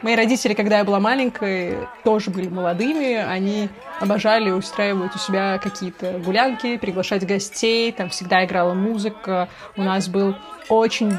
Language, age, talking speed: Russian, 20-39, 140 wpm